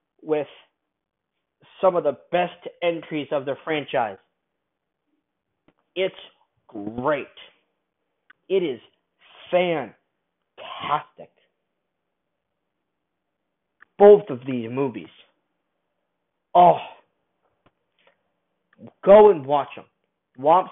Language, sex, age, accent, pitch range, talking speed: English, male, 40-59, American, 130-165 Hz, 70 wpm